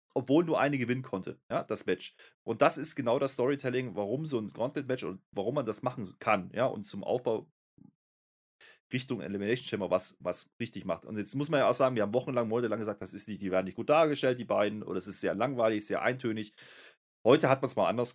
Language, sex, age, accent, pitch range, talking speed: German, male, 30-49, German, 100-125 Hz, 230 wpm